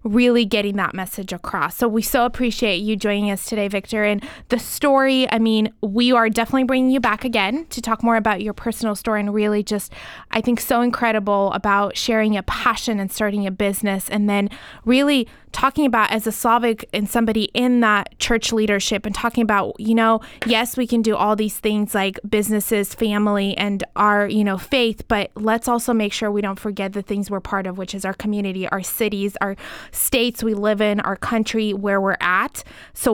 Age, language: 20-39, English